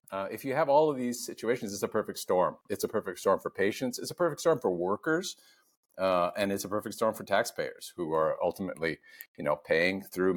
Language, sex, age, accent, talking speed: English, male, 50-69, American, 225 wpm